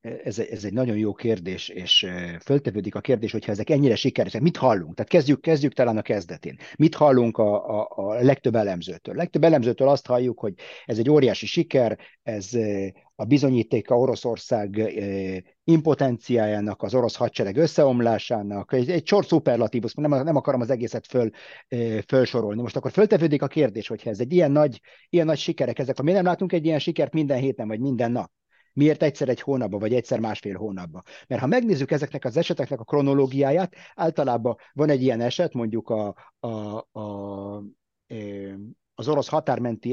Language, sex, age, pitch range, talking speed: Hungarian, male, 50-69, 115-150 Hz, 170 wpm